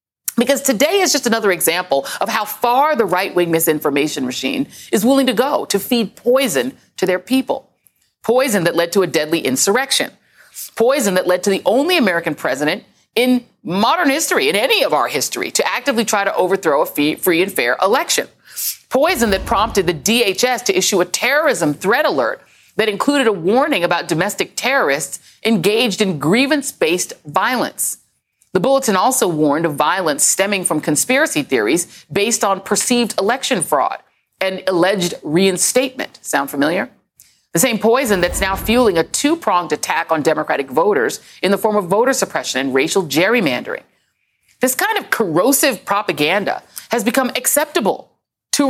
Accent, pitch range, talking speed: American, 180-260 Hz, 160 wpm